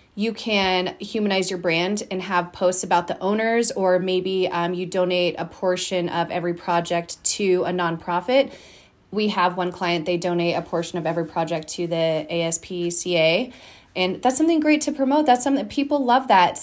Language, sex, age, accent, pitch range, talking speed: English, female, 30-49, American, 175-200 Hz, 175 wpm